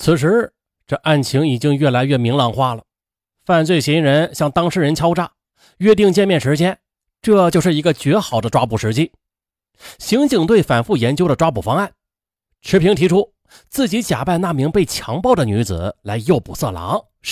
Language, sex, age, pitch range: Chinese, male, 30-49, 115-185 Hz